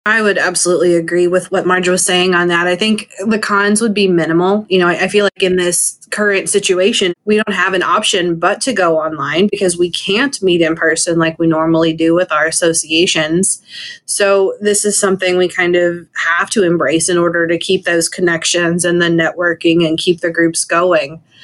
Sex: female